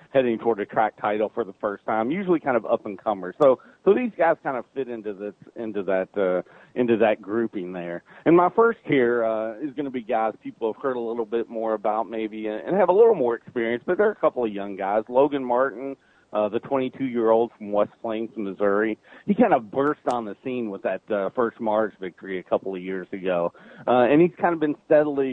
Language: English